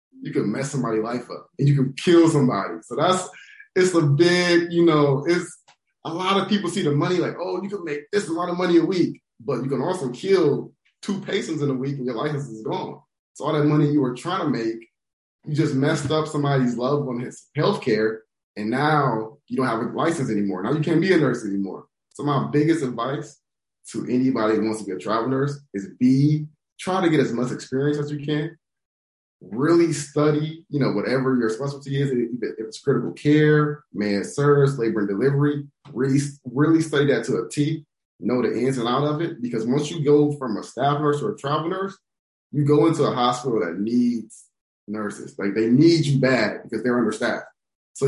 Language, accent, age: English, American, 20-39